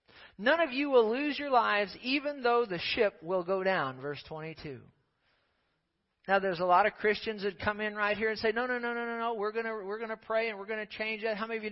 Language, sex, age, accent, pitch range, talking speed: English, male, 40-59, American, 190-245 Hz, 255 wpm